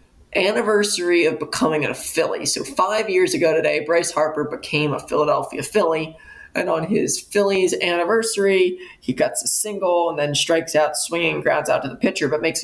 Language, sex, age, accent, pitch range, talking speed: English, male, 20-39, American, 150-205 Hz, 175 wpm